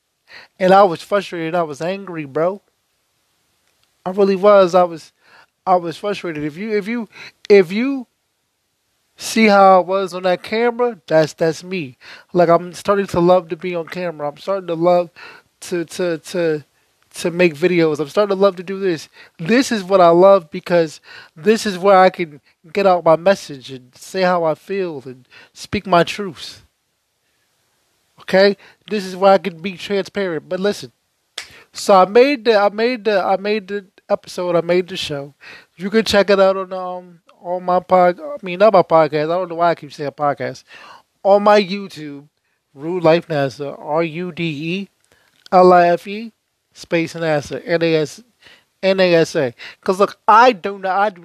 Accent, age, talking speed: American, 20-39, 185 wpm